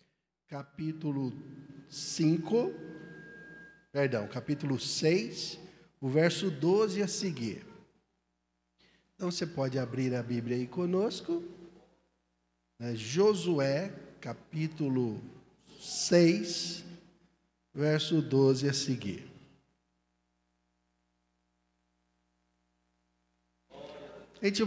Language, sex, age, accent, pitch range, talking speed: Portuguese, male, 60-79, Brazilian, 125-175 Hz, 70 wpm